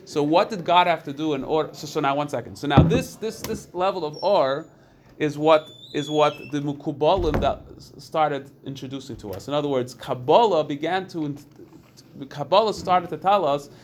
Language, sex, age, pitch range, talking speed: English, male, 30-49, 145-180 Hz, 185 wpm